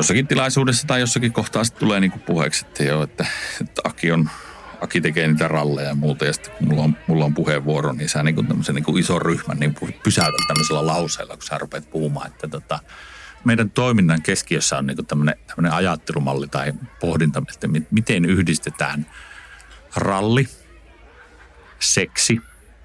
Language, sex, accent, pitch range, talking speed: Finnish, male, native, 75-90 Hz, 150 wpm